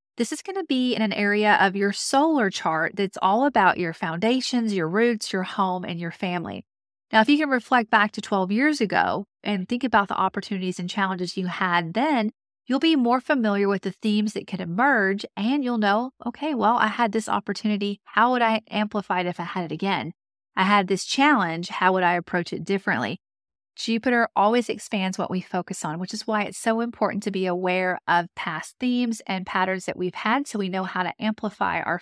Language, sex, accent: English, female, American